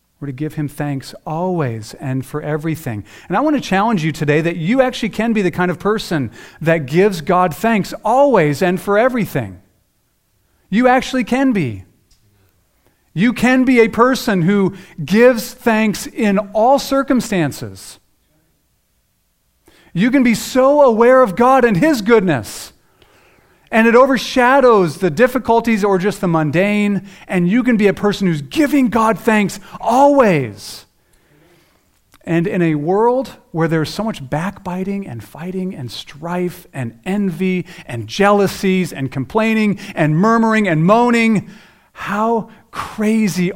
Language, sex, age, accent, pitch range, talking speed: English, male, 40-59, American, 150-225 Hz, 140 wpm